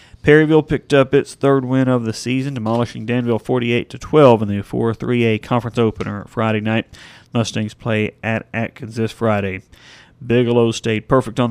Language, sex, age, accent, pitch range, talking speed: English, male, 30-49, American, 110-130 Hz, 150 wpm